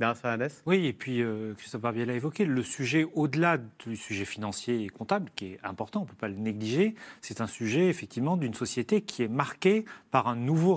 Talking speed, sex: 210 wpm, male